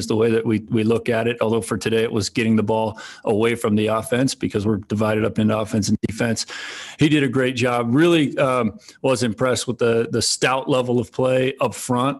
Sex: male